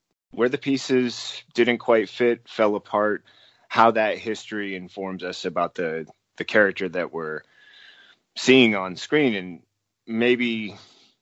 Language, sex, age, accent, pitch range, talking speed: English, male, 30-49, American, 90-115 Hz, 130 wpm